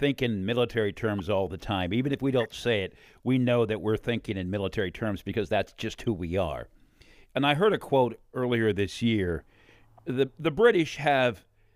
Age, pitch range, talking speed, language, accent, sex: 50-69, 105-130 Hz, 200 wpm, English, American, male